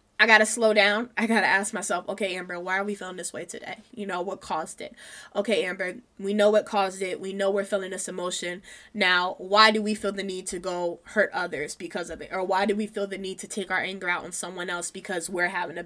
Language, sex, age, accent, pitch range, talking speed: English, female, 20-39, American, 190-220 Hz, 265 wpm